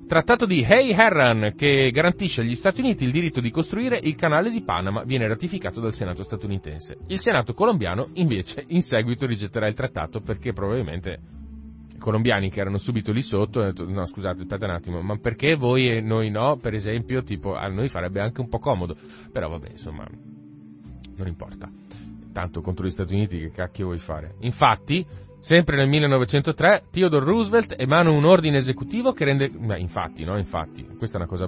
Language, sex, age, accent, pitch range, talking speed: Italian, male, 30-49, native, 95-155 Hz, 185 wpm